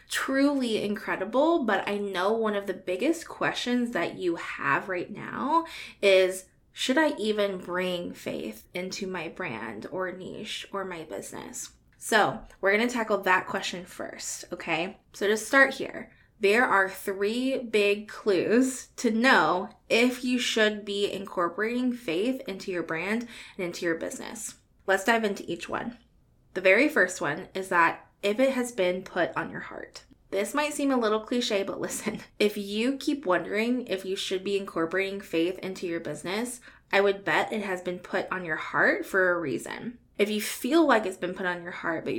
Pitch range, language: 185-240 Hz, English